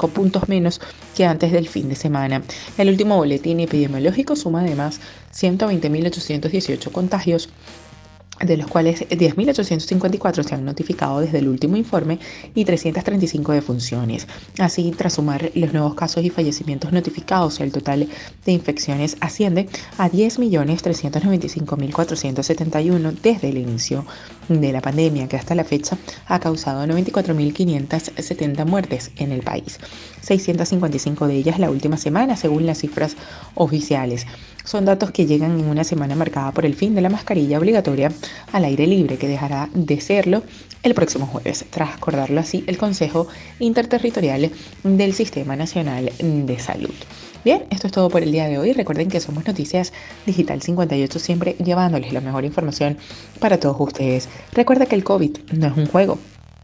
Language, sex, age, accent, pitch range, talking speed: Spanish, female, 30-49, Venezuelan, 145-185 Hz, 150 wpm